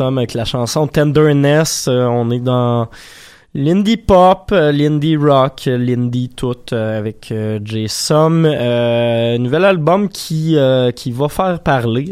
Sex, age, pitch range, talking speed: male, 20-39, 115-145 Hz, 140 wpm